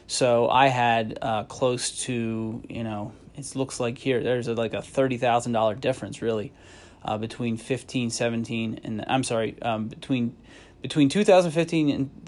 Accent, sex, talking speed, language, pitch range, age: American, male, 165 wpm, English, 115-135 Hz, 30-49